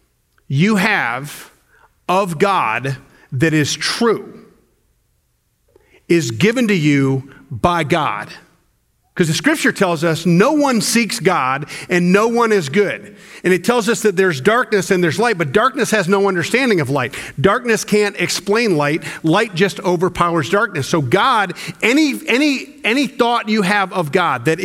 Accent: American